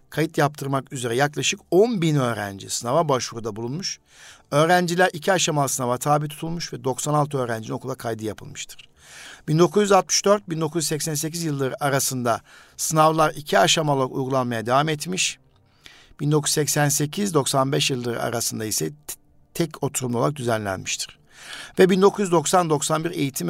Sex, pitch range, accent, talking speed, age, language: male, 125-160 Hz, native, 105 wpm, 60-79, Turkish